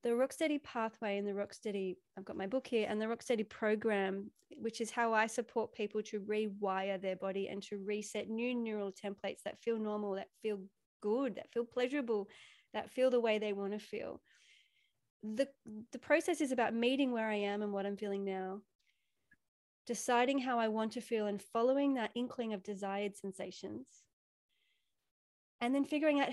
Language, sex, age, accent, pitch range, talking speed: English, female, 30-49, Australian, 205-245 Hz, 180 wpm